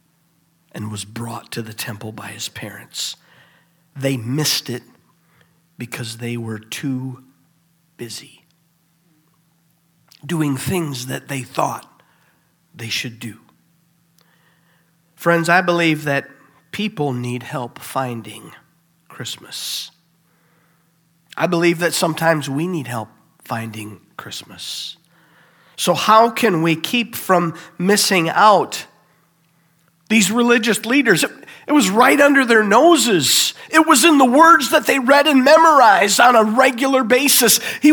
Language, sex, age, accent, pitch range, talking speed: English, male, 50-69, American, 160-230 Hz, 120 wpm